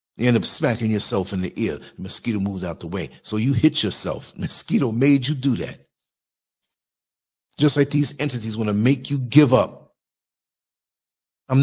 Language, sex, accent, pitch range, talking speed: English, male, American, 105-155 Hz, 170 wpm